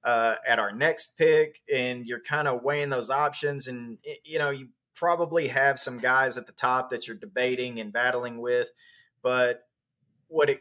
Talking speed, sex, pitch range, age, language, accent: 175 wpm, male, 125-150 Hz, 20-39, English, American